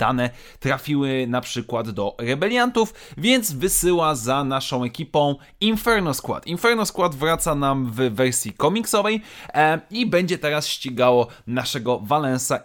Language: Polish